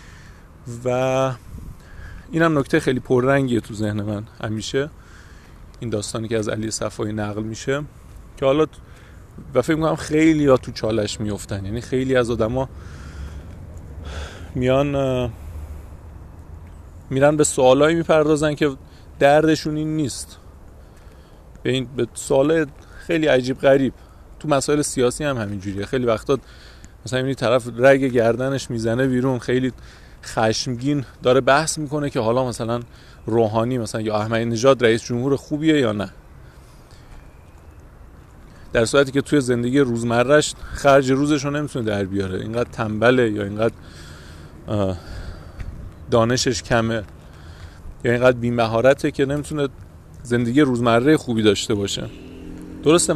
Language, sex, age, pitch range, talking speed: Persian, male, 30-49, 95-135 Hz, 125 wpm